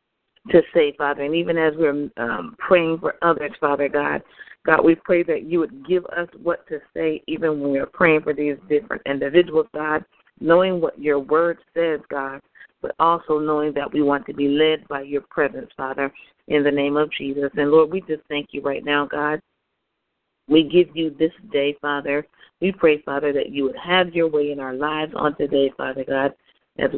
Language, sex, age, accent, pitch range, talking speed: English, female, 40-59, American, 145-165 Hz, 200 wpm